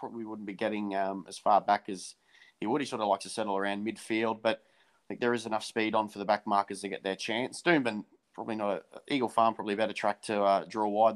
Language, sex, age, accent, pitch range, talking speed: English, male, 20-39, Australian, 100-120 Hz, 260 wpm